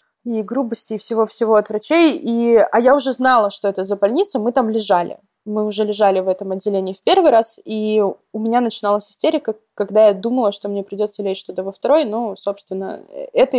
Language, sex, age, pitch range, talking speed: Russian, female, 20-39, 205-245 Hz, 200 wpm